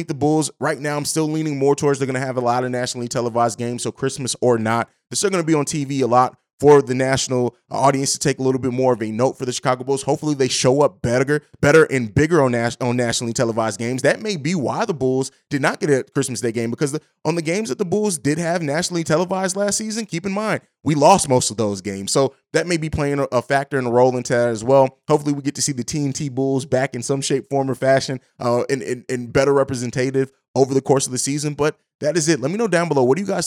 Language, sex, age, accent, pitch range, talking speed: English, male, 20-39, American, 125-150 Hz, 275 wpm